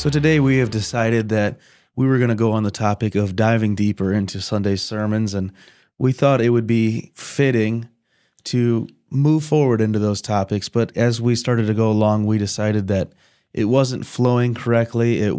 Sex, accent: male, American